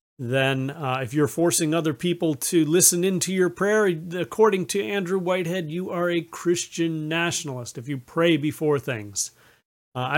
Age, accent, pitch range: 40-59, American, 140-175 Hz